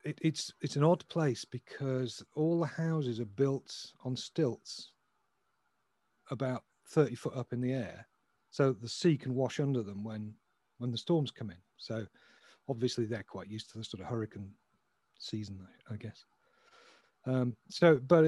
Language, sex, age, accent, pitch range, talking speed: English, male, 40-59, British, 115-145 Hz, 165 wpm